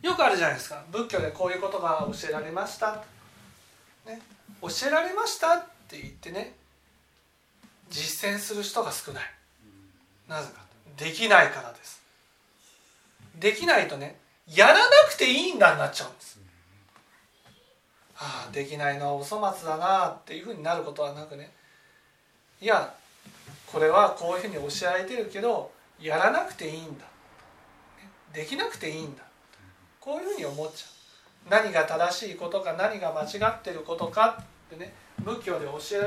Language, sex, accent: Japanese, male, native